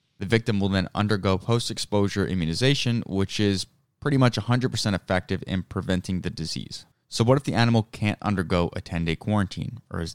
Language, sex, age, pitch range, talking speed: English, male, 20-39, 95-115 Hz, 170 wpm